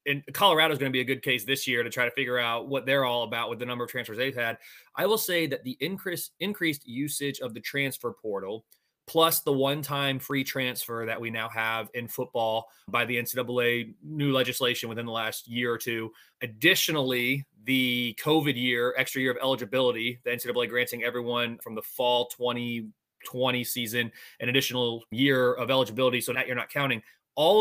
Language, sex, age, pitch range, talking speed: English, male, 30-49, 120-140 Hz, 190 wpm